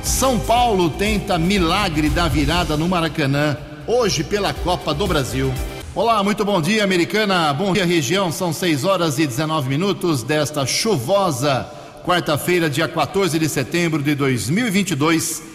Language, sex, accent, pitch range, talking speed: Portuguese, male, Brazilian, 135-170 Hz, 140 wpm